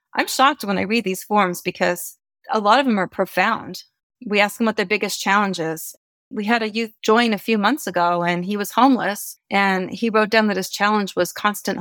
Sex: female